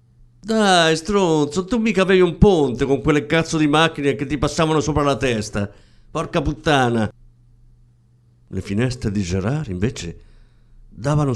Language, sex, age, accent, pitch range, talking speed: Italian, male, 50-69, native, 95-140 Hz, 135 wpm